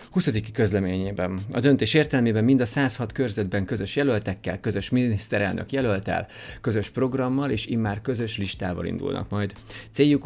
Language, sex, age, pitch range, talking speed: Hungarian, male, 30-49, 100-130 Hz, 135 wpm